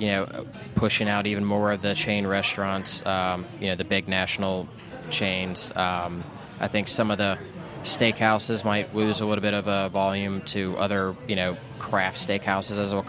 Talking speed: 185 wpm